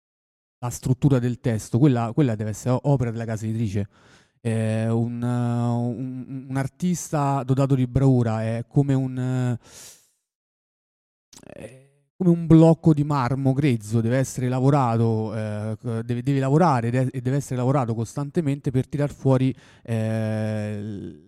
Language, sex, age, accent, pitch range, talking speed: Italian, male, 30-49, native, 115-135 Hz, 135 wpm